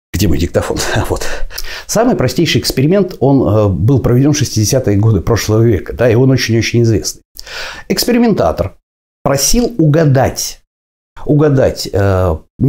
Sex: male